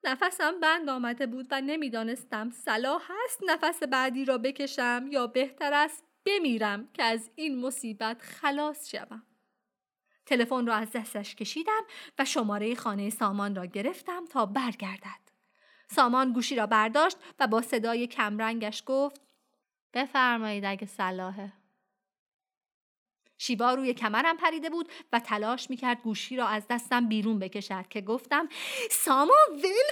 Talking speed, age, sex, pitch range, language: 130 wpm, 30-49, female, 220-295 Hz, Persian